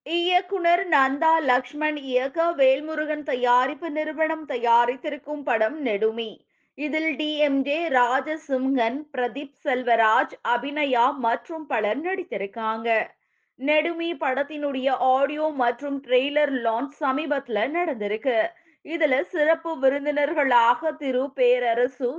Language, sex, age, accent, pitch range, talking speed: Tamil, female, 20-39, native, 250-310 Hz, 85 wpm